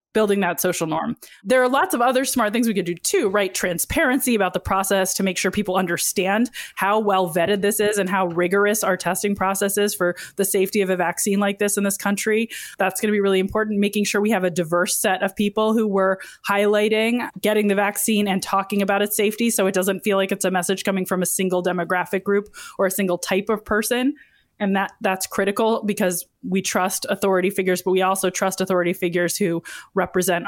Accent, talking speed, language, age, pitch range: American, 220 wpm, English, 20-39, 185-210 Hz